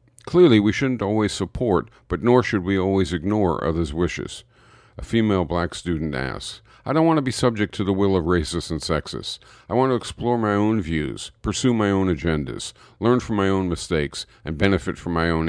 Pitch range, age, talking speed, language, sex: 85-110 Hz, 50-69, 200 wpm, English, male